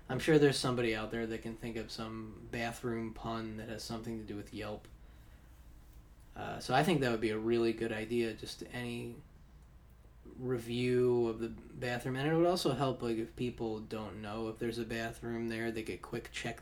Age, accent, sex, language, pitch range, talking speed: 20-39, American, male, English, 105-120 Hz, 200 wpm